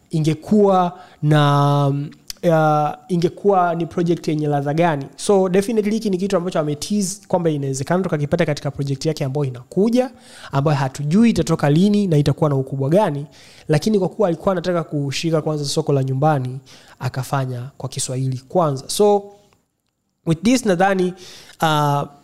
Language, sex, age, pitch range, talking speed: Swahili, male, 20-39, 145-175 Hz, 140 wpm